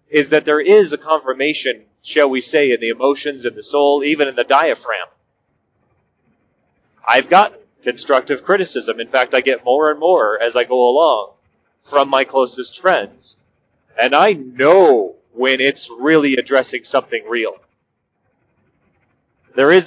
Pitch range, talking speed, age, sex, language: 130-165 Hz, 150 wpm, 30-49, male, English